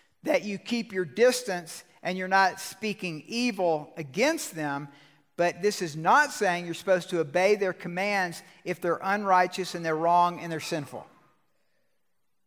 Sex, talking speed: male, 155 wpm